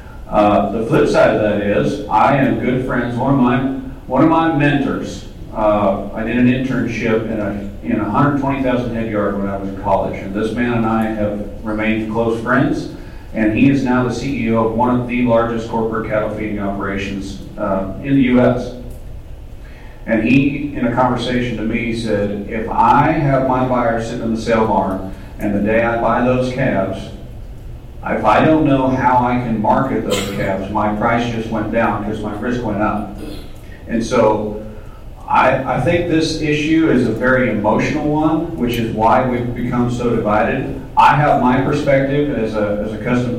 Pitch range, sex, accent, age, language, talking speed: 105-125 Hz, male, American, 40-59, English, 185 wpm